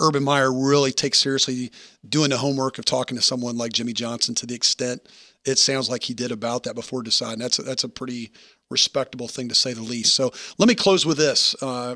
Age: 40-59